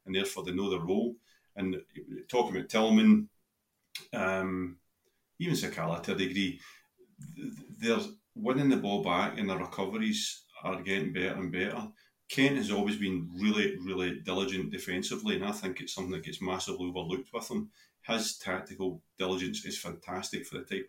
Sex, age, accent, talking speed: male, 30-49, British, 160 wpm